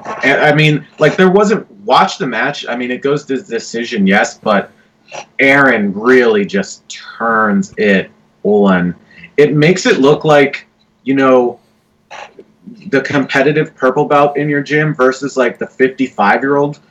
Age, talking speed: 30-49, 140 wpm